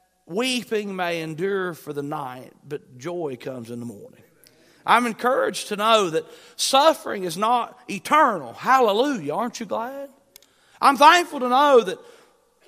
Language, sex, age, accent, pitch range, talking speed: English, male, 40-59, American, 175-255 Hz, 140 wpm